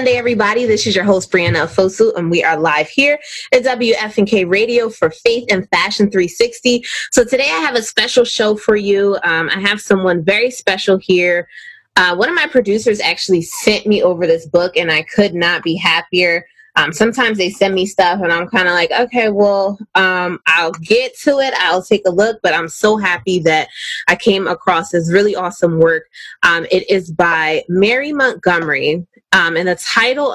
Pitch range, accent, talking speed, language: 175-220 Hz, American, 195 wpm, English